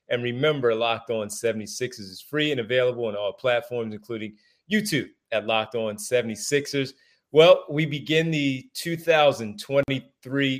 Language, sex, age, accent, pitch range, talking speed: English, male, 30-49, American, 115-140 Hz, 130 wpm